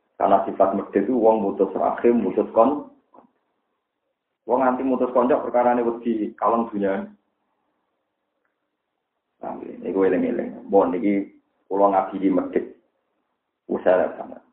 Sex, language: male, Indonesian